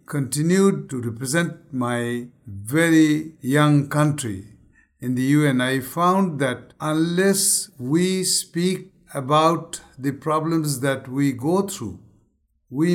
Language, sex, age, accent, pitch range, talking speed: English, male, 60-79, Indian, 120-150 Hz, 110 wpm